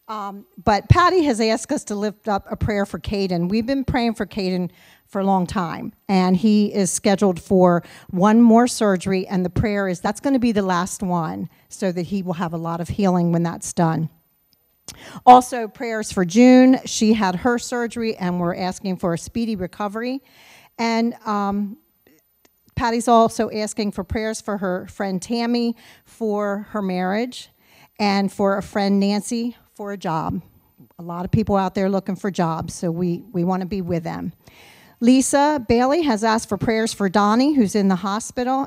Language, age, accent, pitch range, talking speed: English, 40-59, American, 185-230 Hz, 185 wpm